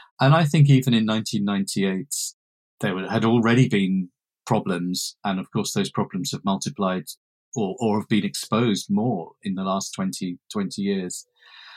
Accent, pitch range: British, 105-145 Hz